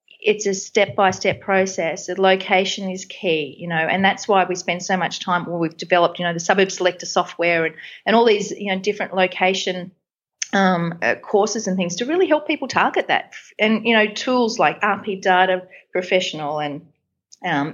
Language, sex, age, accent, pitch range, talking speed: English, female, 30-49, Australian, 170-195 Hz, 200 wpm